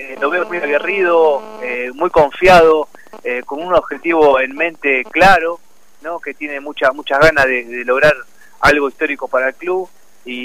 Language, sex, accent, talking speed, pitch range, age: Spanish, male, Argentinian, 170 wpm, 125-165 Hz, 30-49